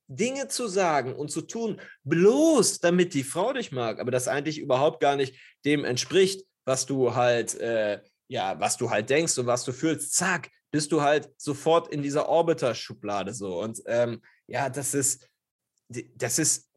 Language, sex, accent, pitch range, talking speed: German, male, German, 135-175 Hz, 170 wpm